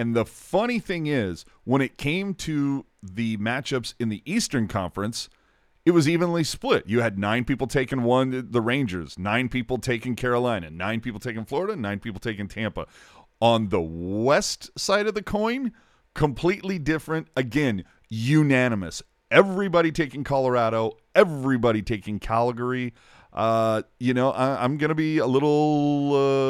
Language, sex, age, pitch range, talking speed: English, male, 40-59, 110-145 Hz, 145 wpm